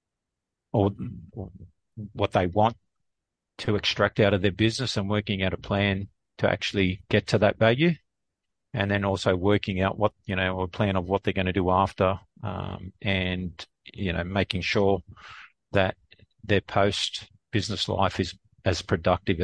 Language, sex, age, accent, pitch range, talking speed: English, male, 50-69, Australian, 90-105 Hz, 160 wpm